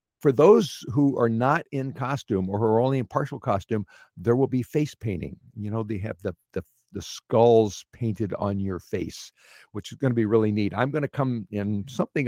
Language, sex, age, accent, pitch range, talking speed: English, male, 60-79, American, 105-135 Hz, 215 wpm